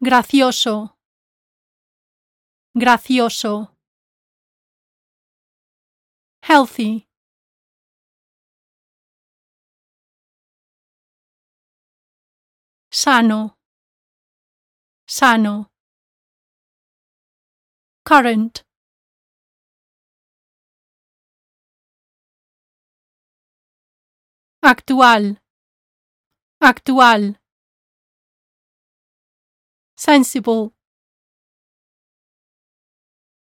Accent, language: American, English